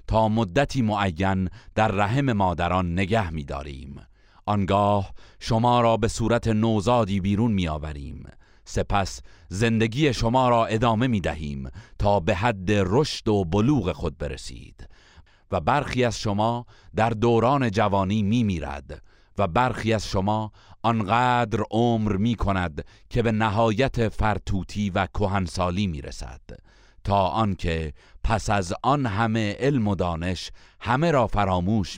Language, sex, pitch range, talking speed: Persian, male, 90-115 Hz, 130 wpm